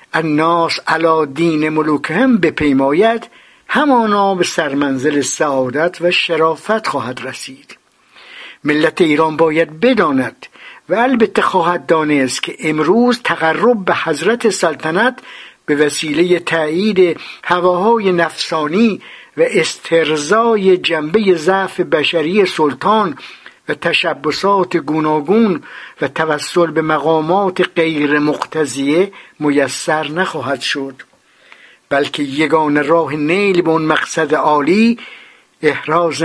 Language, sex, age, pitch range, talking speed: Persian, male, 60-79, 150-190 Hz, 100 wpm